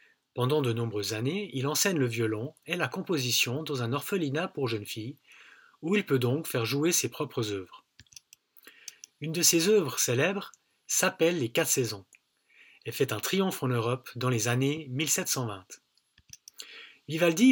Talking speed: 160 wpm